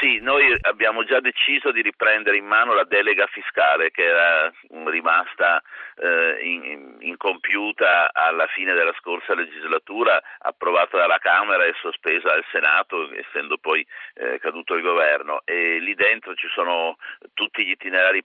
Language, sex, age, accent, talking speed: Italian, male, 50-69, native, 140 wpm